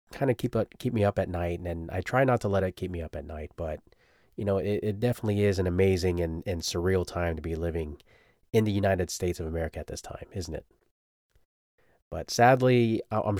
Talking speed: 235 wpm